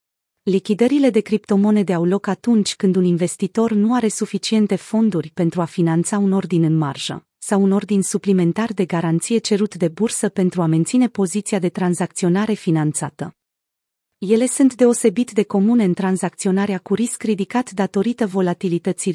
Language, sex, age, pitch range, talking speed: Romanian, female, 30-49, 170-225 Hz, 150 wpm